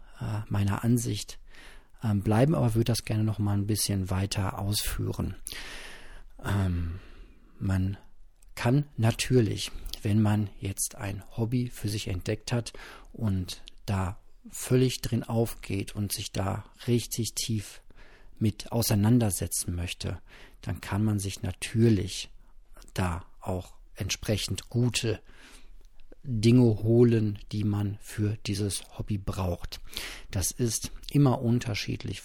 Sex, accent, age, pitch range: male, German, 40-59, 95-115 Hz